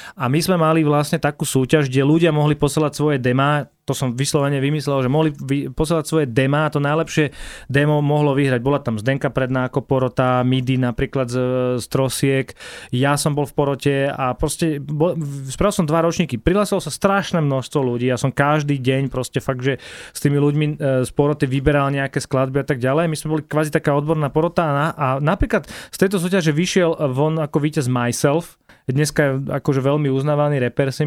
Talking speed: 190 wpm